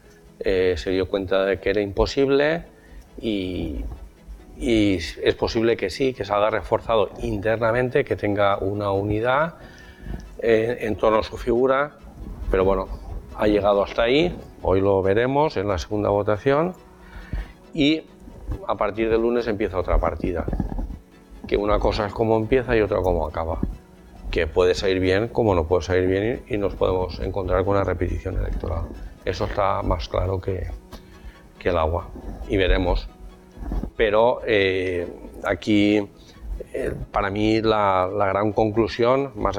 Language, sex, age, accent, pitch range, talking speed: Spanish, male, 40-59, Spanish, 95-110 Hz, 150 wpm